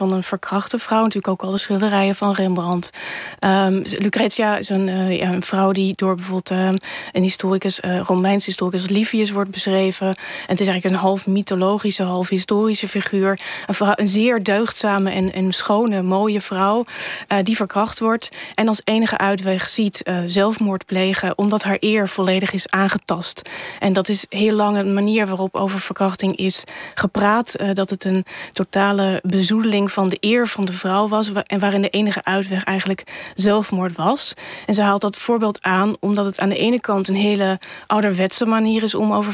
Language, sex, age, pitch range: Dutch, female, 20-39, 190-215 Hz